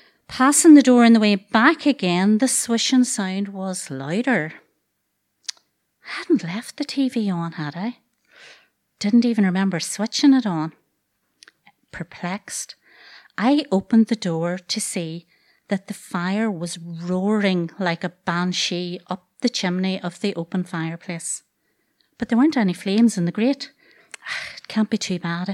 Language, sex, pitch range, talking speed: English, female, 180-230 Hz, 145 wpm